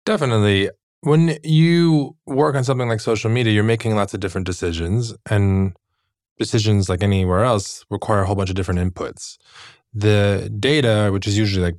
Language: English